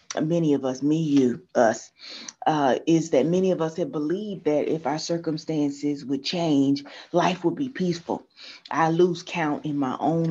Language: English